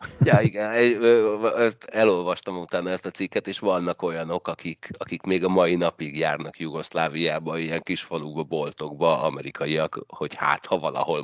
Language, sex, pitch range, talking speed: Hungarian, male, 80-110 Hz, 145 wpm